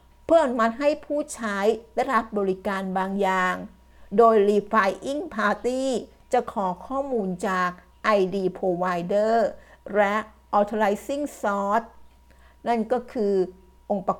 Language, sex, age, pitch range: Thai, female, 60-79, 190-225 Hz